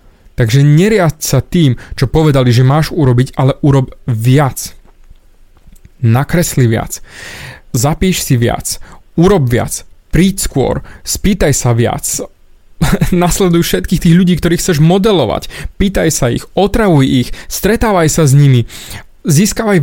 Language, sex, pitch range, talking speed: Slovak, male, 130-175 Hz, 125 wpm